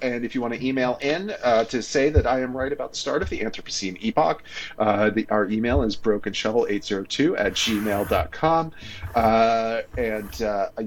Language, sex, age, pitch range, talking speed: English, male, 40-59, 110-150 Hz, 200 wpm